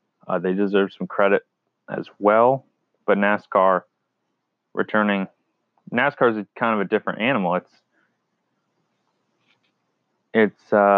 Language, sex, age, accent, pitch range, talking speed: English, male, 20-39, American, 100-120 Hz, 105 wpm